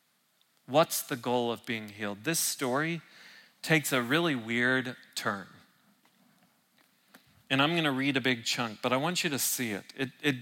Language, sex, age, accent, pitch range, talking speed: English, male, 40-59, American, 140-200 Hz, 175 wpm